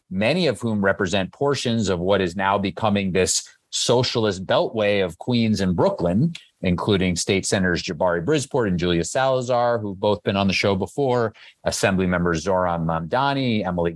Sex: male